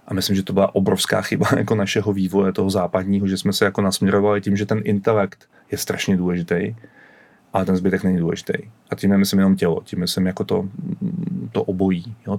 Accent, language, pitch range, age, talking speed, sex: native, Czech, 95-105 Hz, 30-49, 200 wpm, male